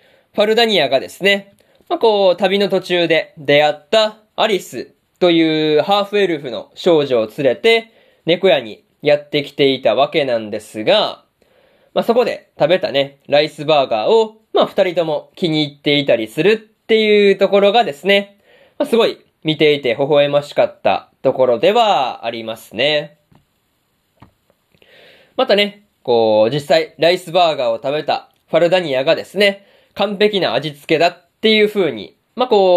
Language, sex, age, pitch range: Japanese, male, 20-39, 150-210 Hz